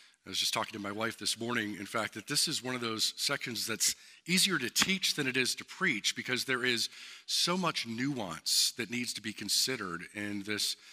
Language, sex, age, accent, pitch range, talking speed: English, male, 50-69, American, 100-130 Hz, 220 wpm